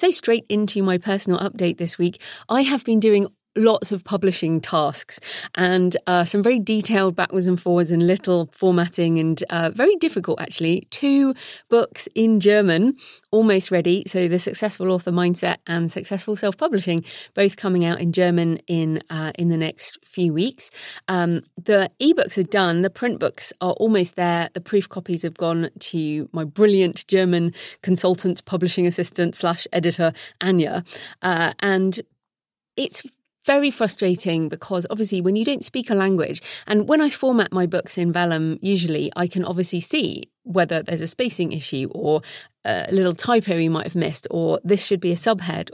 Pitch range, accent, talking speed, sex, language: 170-210 Hz, British, 170 wpm, female, English